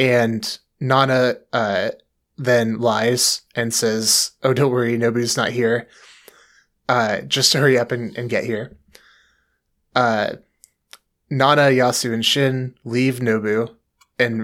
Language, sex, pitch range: English, male, 110-130 Hz